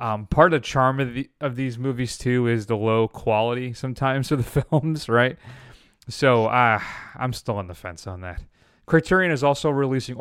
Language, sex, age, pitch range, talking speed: English, male, 30-49, 110-130 Hz, 190 wpm